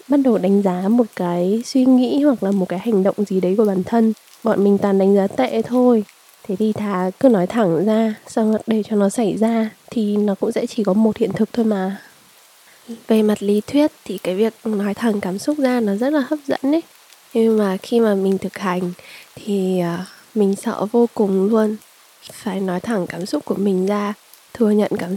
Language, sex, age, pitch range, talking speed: Vietnamese, female, 20-39, 195-230 Hz, 220 wpm